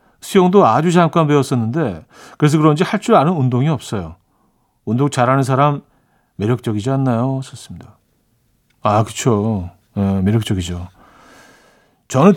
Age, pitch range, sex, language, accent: 40-59, 115-170 Hz, male, Korean, native